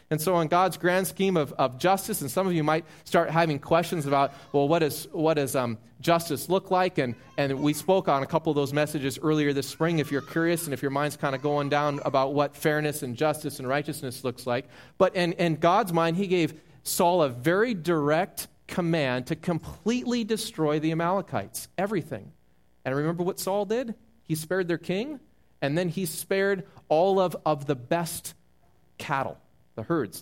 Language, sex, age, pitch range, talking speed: English, male, 30-49, 135-185 Hz, 200 wpm